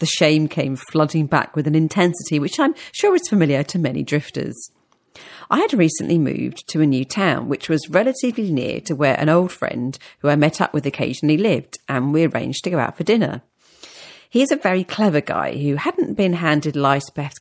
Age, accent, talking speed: 40-59, British, 205 wpm